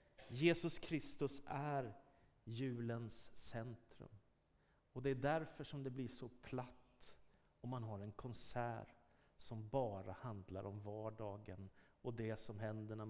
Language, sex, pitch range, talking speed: Swedish, male, 105-130 Hz, 135 wpm